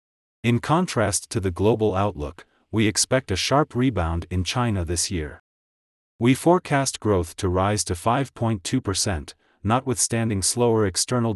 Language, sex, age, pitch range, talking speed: English, male, 40-59, 90-120 Hz, 130 wpm